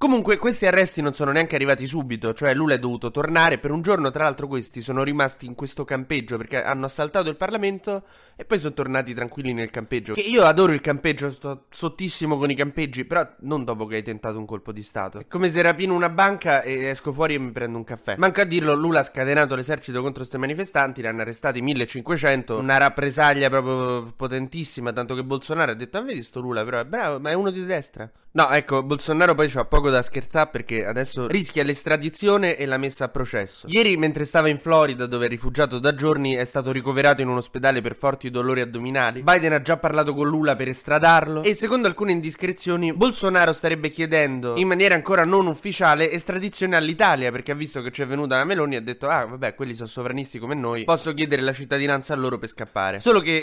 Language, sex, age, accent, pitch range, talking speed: Italian, male, 20-39, native, 130-165 Hz, 220 wpm